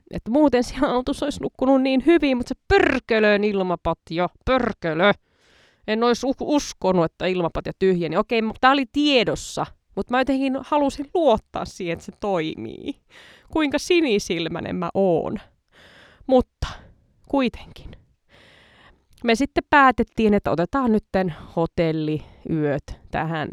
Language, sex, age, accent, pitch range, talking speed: Finnish, female, 20-39, native, 165-240 Hz, 120 wpm